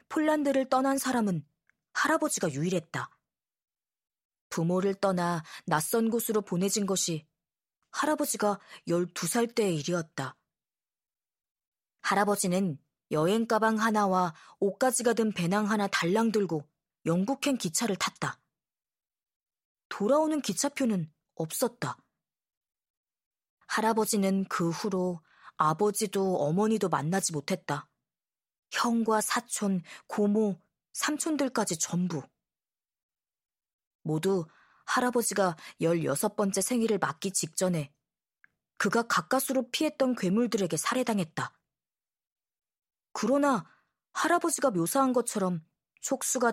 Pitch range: 170-235 Hz